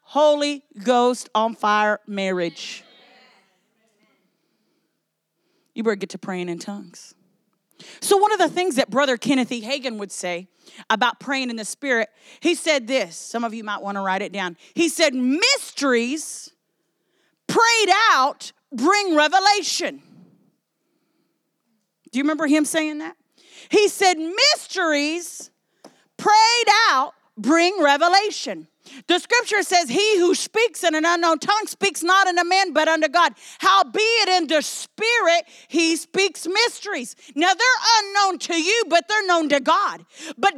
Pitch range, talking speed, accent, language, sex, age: 265-385 Hz, 145 wpm, American, English, female, 40-59